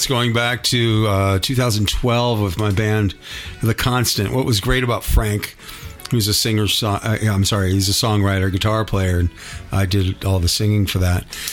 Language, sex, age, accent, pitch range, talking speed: English, male, 50-69, American, 95-120 Hz, 175 wpm